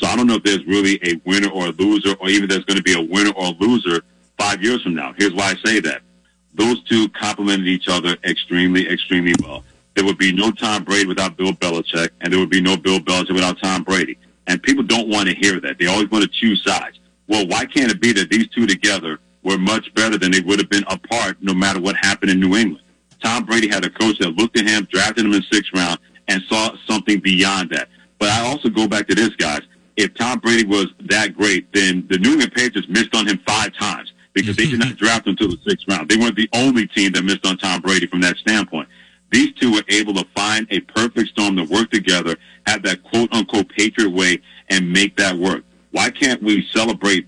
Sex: male